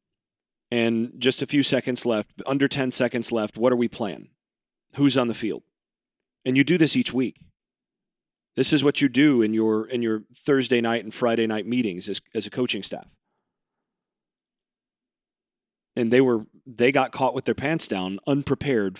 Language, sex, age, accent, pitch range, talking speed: English, male, 40-59, American, 115-140 Hz, 175 wpm